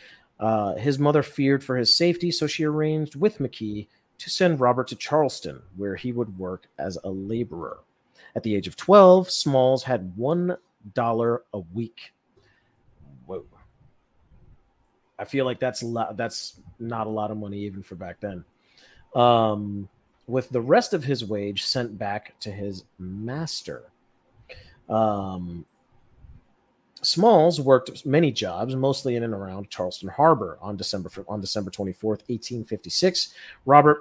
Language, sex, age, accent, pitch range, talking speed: English, male, 30-49, American, 105-145 Hz, 140 wpm